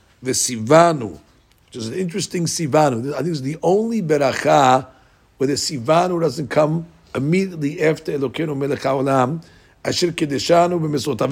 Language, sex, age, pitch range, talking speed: English, male, 60-79, 125-175 Hz, 140 wpm